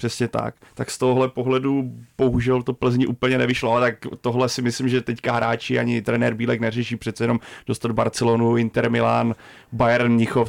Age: 30-49